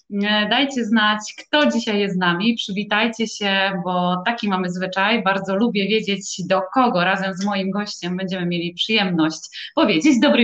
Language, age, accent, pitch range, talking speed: Polish, 20-39, native, 190-235 Hz, 155 wpm